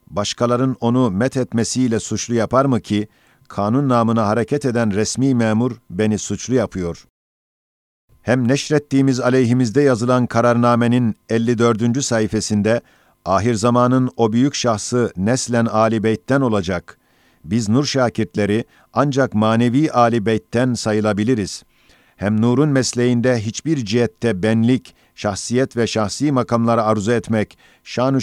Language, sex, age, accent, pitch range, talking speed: Turkish, male, 50-69, native, 110-125 Hz, 115 wpm